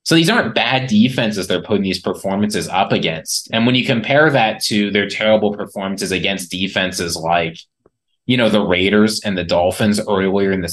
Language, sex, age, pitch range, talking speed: English, male, 20-39, 95-125 Hz, 185 wpm